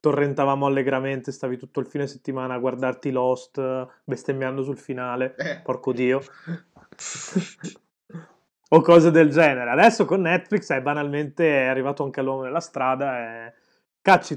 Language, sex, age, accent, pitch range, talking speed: Italian, male, 20-39, native, 125-150 Hz, 140 wpm